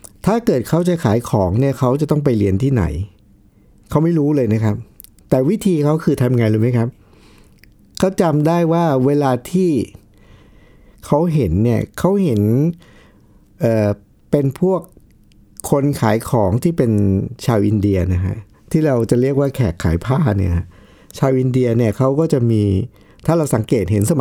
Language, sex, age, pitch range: Thai, male, 60-79, 105-150 Hz